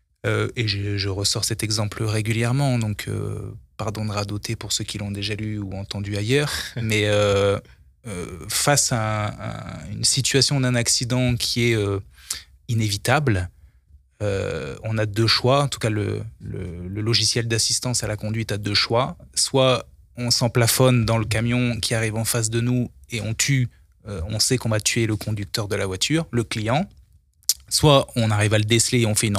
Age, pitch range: 20-39, 105-125 Hz